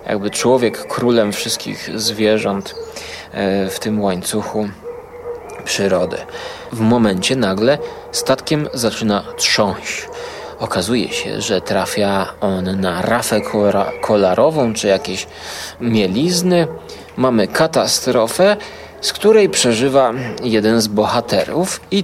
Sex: male